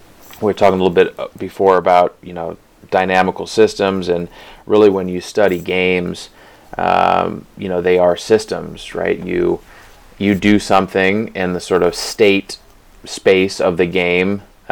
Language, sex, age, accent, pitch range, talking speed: English, male, 30-49, American, 90-100 Hz, 155 wpm